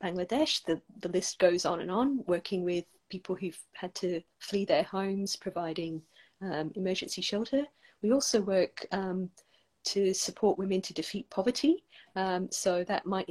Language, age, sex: English, 40-59, female